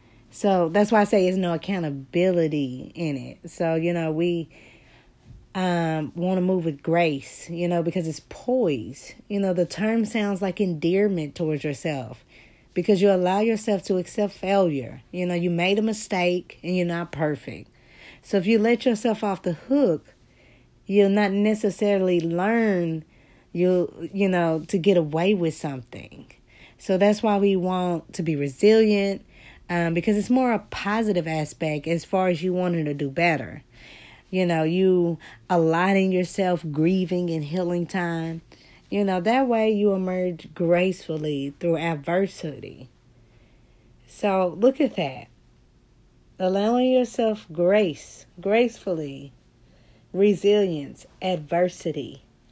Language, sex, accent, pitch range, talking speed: English, female, American, 165-200 Hz, 140 wpm